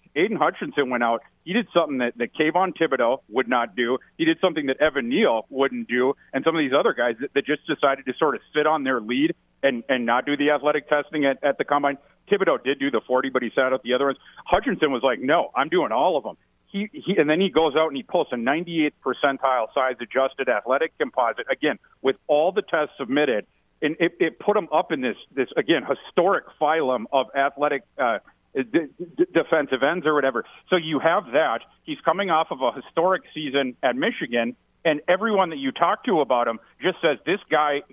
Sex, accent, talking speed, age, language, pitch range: male, American, 220 wpm, 50-69, English, 130-165 Hz